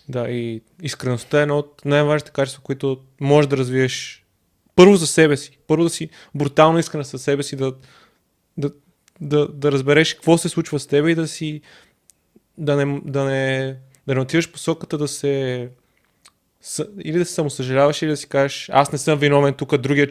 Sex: male